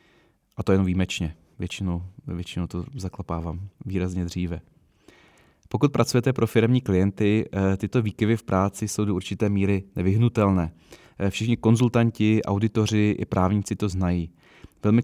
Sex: male